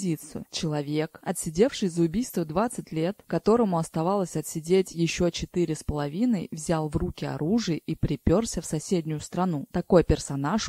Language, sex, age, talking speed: Russian, female, 20-39, 135 wpm